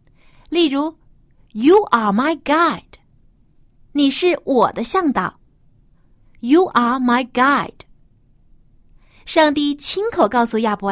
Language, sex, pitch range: Chinese, female, 205-295 Hz